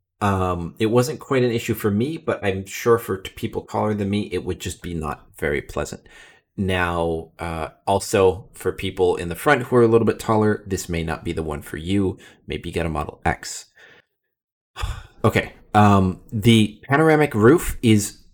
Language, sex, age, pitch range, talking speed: English, male, 30-49, 95-115 Hz, 185 wpm